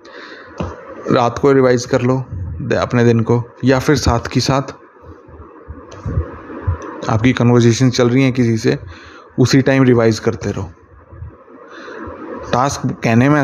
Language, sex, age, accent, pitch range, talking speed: Hindi, male, 20-39, native, 110-130 Hz, 125 wpm